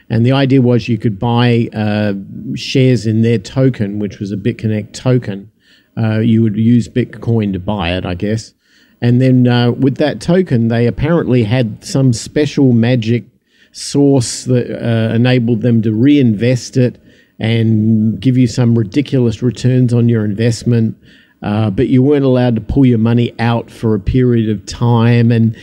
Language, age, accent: English, 50-69, Australian